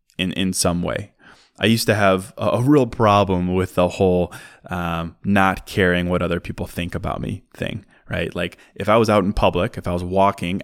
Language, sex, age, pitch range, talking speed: English, male, 20-39, 90-105 Hz, 210 wpm